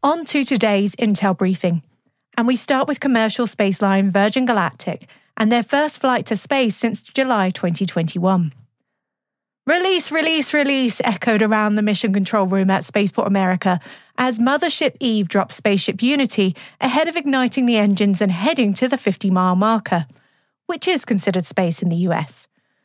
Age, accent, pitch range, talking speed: 30-49, British, 190-250 Hz, 150 wpm